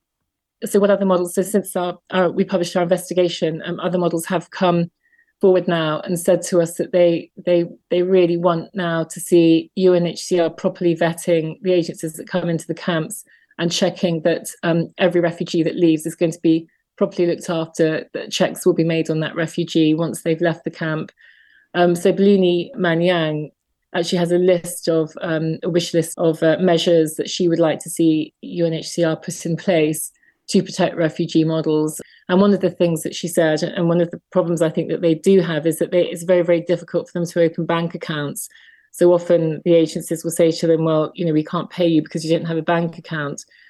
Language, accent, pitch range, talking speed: English, British, 165-180 Hz, 210 wpm